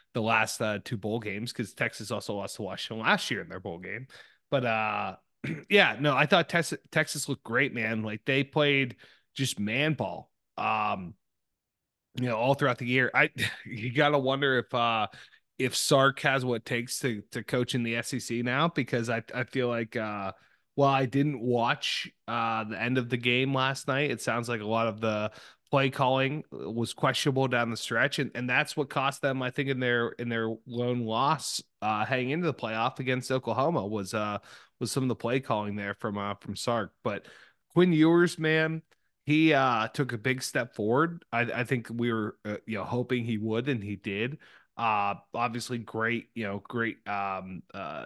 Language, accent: English, American